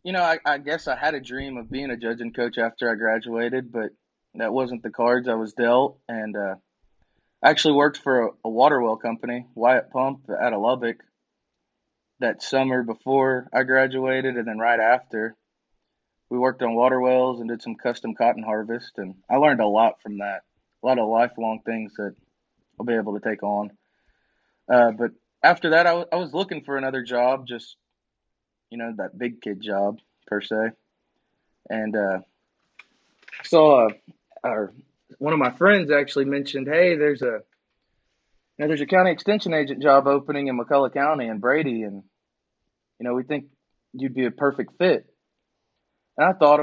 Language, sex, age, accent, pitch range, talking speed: English, male, 20-39, American, 115-140 Hz, 185 wpm